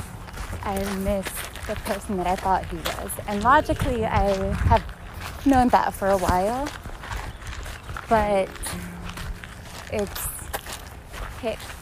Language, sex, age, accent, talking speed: English, female, 20-39, American, 105 wpm